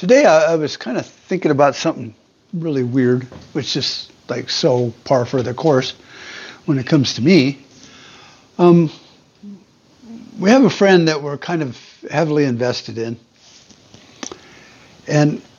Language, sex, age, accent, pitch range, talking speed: English, male, 60-79, American, 125-160 Hz, 140 wpm